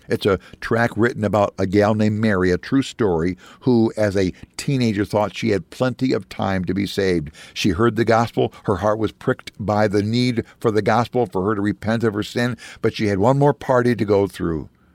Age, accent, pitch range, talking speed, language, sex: 60-79, American, 90-115 Hz, 220 wpm, English, male